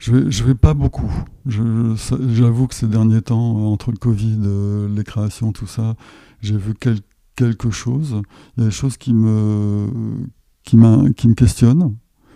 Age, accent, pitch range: 60-79, French, 110-125 Hz